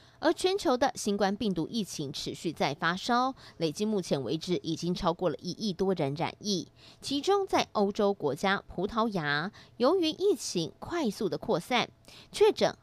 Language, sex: Chinese, female